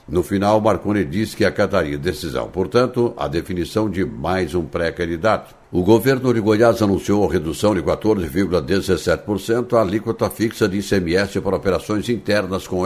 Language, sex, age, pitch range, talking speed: Portuguese, male, 60-79, 90-110 Hz, 150 wpm